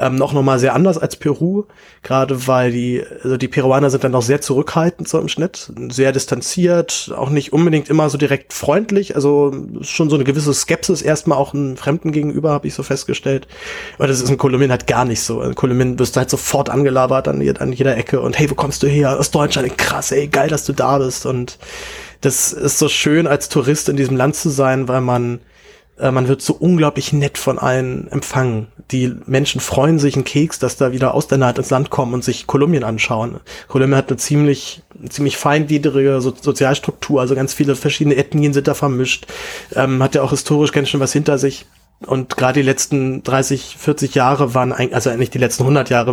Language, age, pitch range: German, 20-39, 130-145 Hz